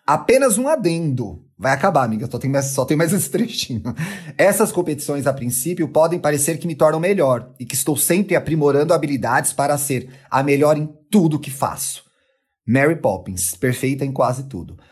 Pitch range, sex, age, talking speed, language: 135-180 Hz, male, 30-49, 170 wpm, Portuguese